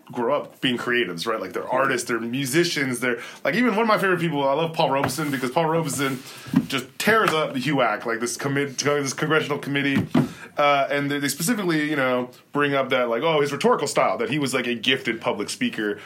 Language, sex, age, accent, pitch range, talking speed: English, male, 20-39, American, 125-160 Hz, 215 wpm